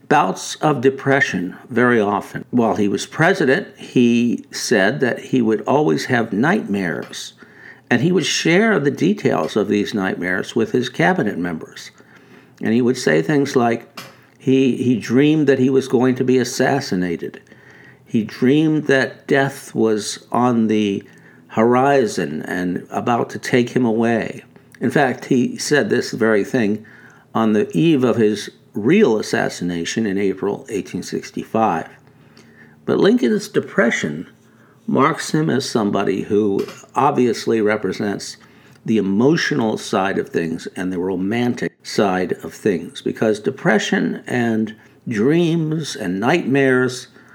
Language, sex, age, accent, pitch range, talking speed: English, male, 60-79, American, 110-140 Hz, 130 wpm